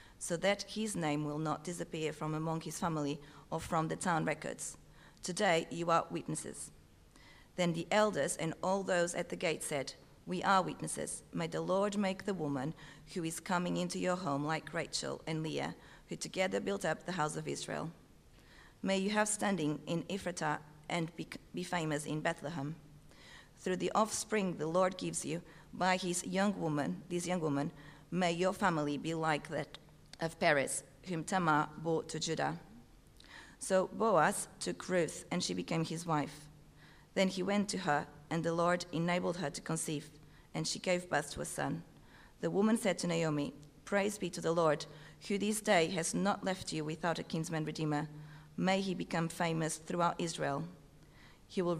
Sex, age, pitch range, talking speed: female, 40-59, 150-180 Hz, 175 wpm